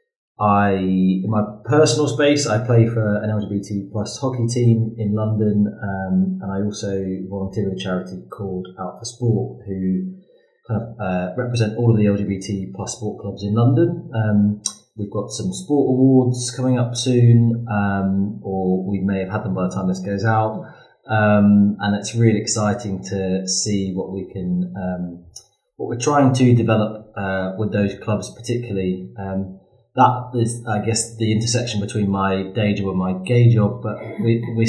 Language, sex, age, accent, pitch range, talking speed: English, male, 30-49, British, 100-115 Hz, 170 wpm